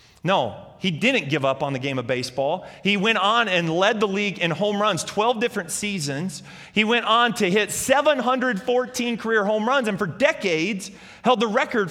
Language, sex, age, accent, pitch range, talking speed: English, male, 30-49, American, 150-235 Hz, 190 wpm